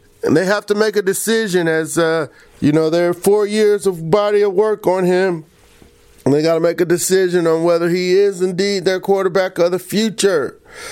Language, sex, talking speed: English, male, 210 wpm